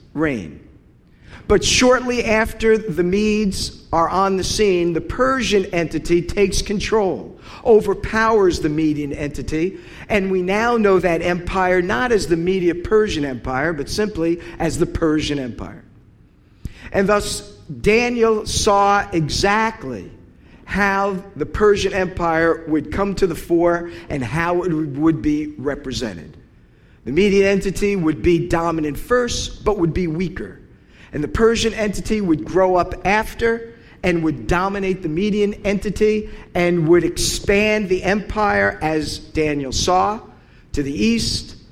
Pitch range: 155-200 Hz